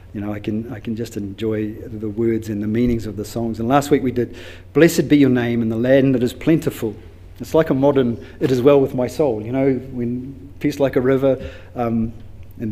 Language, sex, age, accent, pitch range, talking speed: English, male, 40-59, Australian, 100-135 Hz, 235 wpm